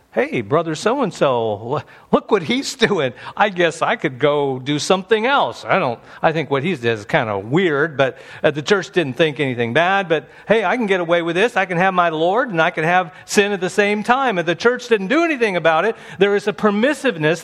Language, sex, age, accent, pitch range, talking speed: English, male, 50-69, American, 120-200 Hz, 235 wpm